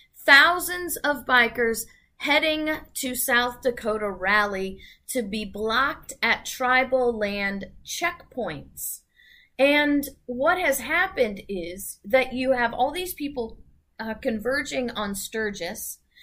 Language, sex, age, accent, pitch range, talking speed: English, female, 30-49, American, 215-290 Hz, 110 wpm